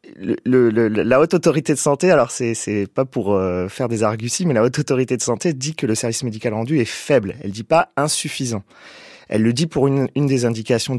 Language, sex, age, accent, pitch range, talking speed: French, male, 30-49, French, 115-150 Hz, 245 wpm